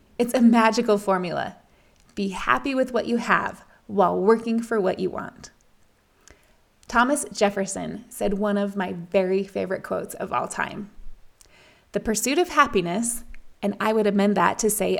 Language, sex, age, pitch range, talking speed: English, female, 20-39, 205-245 Hz, 155 wpm